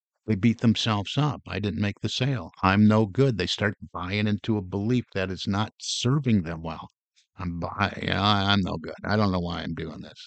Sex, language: male, English